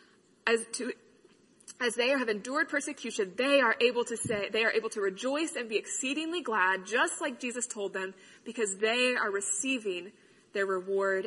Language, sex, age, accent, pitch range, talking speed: English, female, 20-39, American, 215-280 Hz, 170 wpm